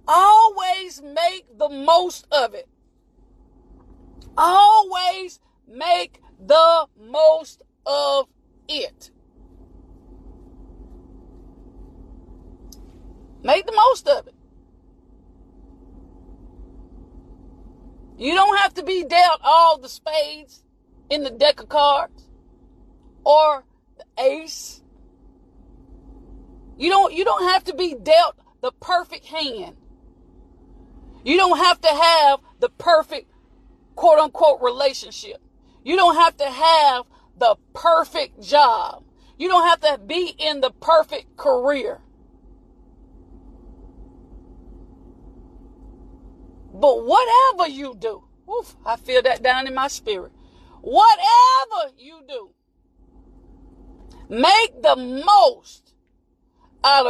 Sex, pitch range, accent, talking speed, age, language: female, 230-350 Hz, American, 95 wpm, 40-59, English